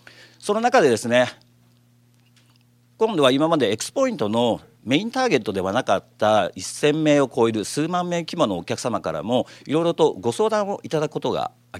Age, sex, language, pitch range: 50-69, male, Japanese, 120-185 Hz